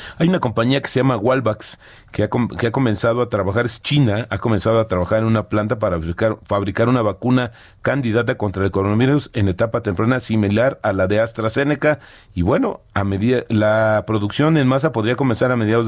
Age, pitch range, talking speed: 40-59, 100-125 Hz, 195 wpm